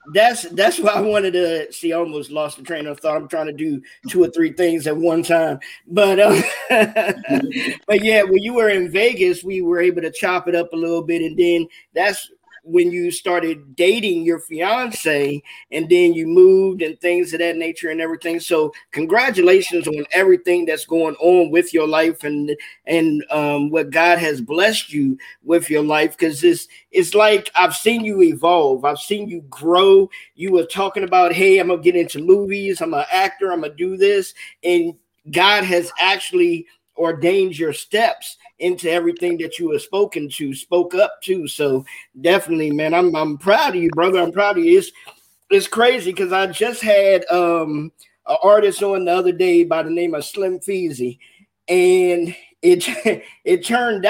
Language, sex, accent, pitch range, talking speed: English, male, American, 165-225 Hz, 190 wpm